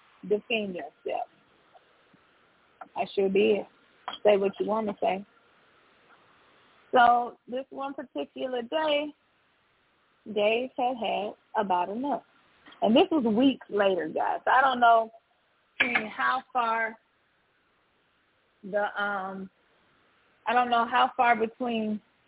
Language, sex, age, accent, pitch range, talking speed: English, female, 20-39, American, 210-250 Hz, 110 wpm